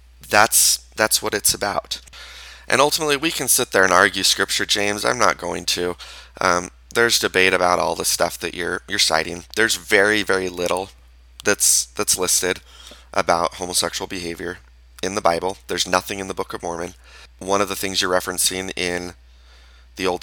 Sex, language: male, English